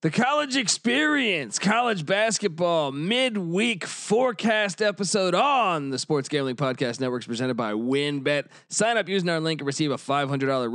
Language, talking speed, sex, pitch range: English, 145 wpm, male, 150-210 Hz